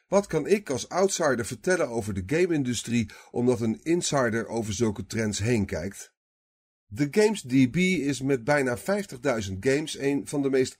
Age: 40-59